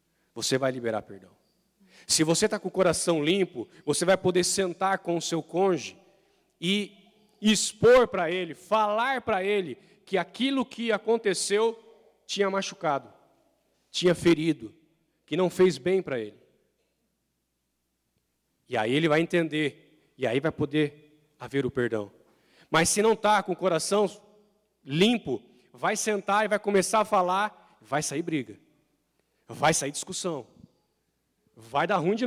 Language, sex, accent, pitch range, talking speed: Portuguese, male, Brazilian, 150-205 Hz, 145 wpm